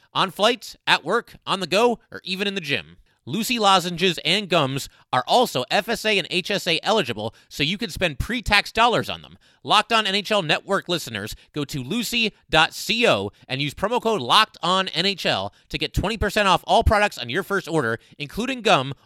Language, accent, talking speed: English, American, 175 wpm